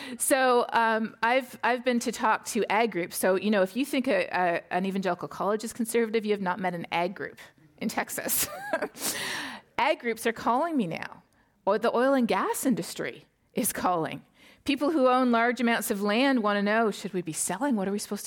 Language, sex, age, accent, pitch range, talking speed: English, female, 40-59, American, 185-235 Hz, 205 wpm